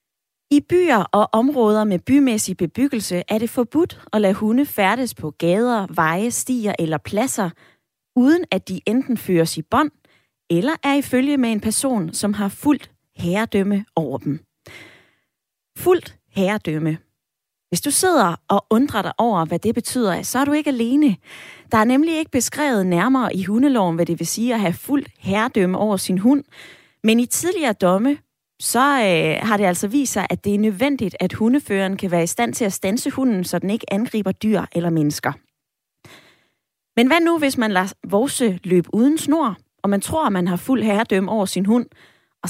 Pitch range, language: 185-260 Hz, Danish